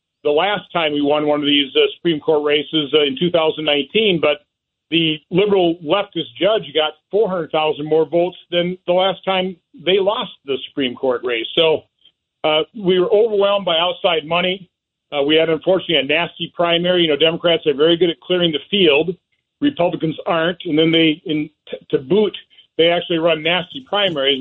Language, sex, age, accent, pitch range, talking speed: English, male, 50-69, American, 155-200 Hz, 175 wpm